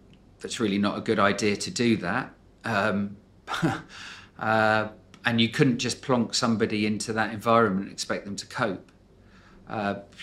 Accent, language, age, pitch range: British, English, 40-59, 95-110 Hz